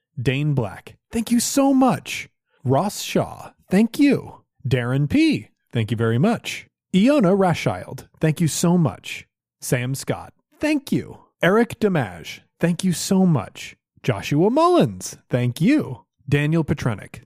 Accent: American